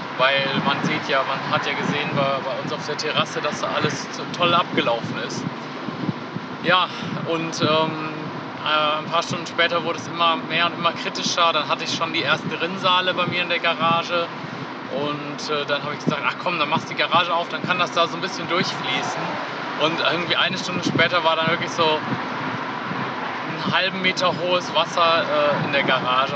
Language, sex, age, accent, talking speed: German, male, 30-49, German, 195 wpm